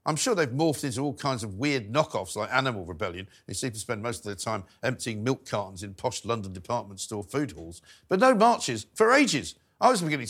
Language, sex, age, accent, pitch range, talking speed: English, male, 50-69, British, 120-170 Hz, 225 wpm